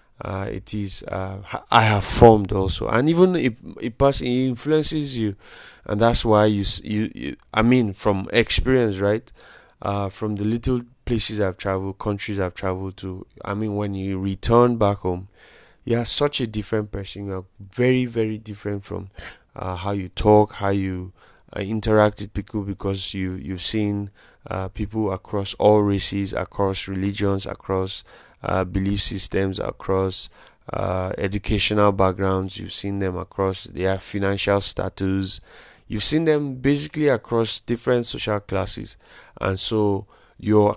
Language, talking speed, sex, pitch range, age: English, 150 wpm, male, 95-110 Hz, 20-39